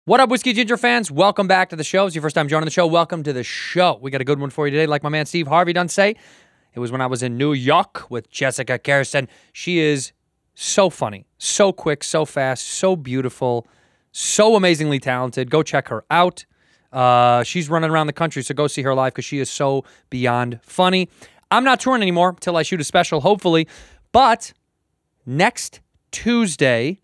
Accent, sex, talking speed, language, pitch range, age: American, male, 210 wpm, English, 135-175 Hz, 20-39